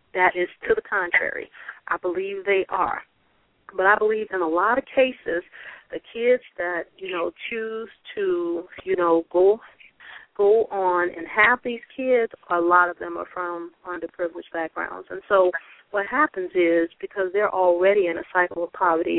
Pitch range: 180-245 Hz